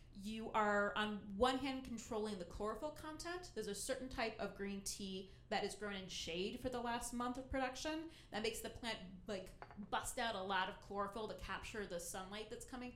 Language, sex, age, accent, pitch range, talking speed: English, female, 30-49, American, 205-245 Hz, 205 wpm